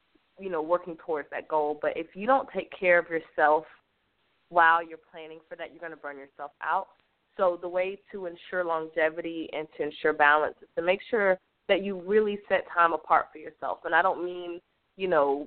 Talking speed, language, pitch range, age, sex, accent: 205 wpm, English, 160-185 Hz, 20-39, female, American